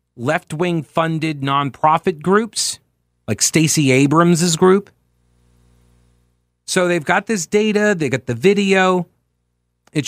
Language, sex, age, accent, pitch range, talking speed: English, male, 40-59, American, 110-180 Hz, 115 wpm